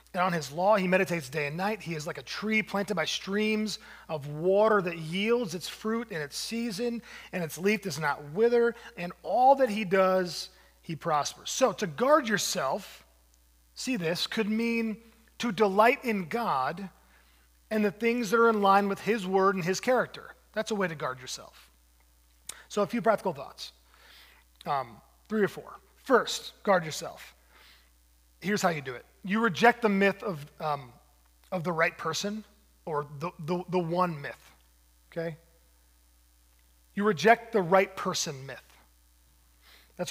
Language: English